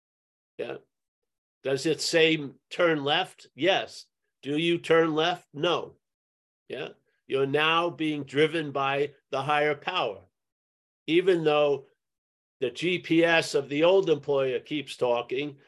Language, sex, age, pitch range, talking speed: English, male, 50-69, 140-170 Hz, 120 wpm